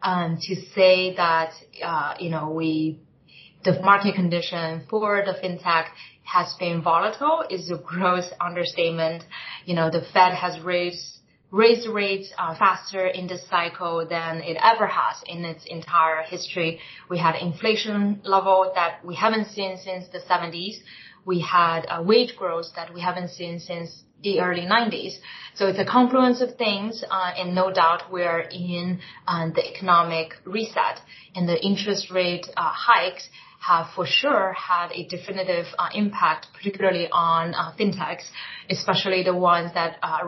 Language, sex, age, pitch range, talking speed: English, female, 20-39, 170-195 Hz, 155 wpm